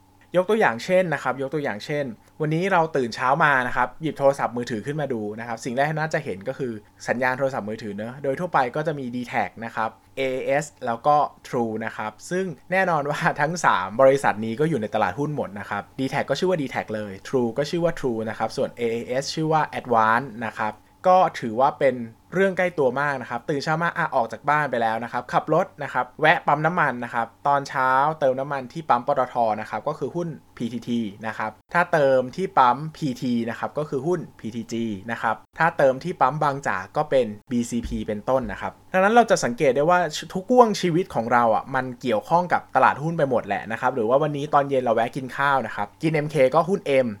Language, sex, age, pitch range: Thai, male, 20-39, 115-150 Hz